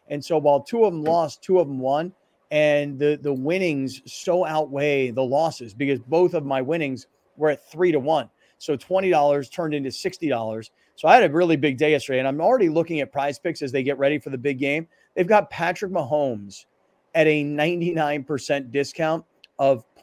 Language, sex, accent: English, male, American